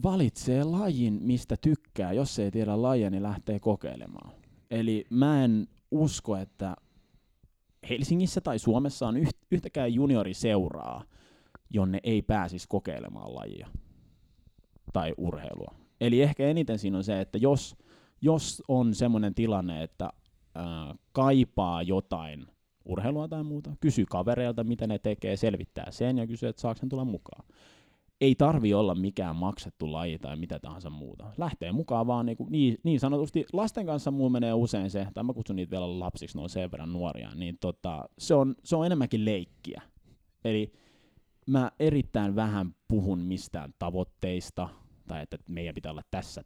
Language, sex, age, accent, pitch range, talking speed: Finnish, male, 20-39, native, 90-125 Hz, 150 wpm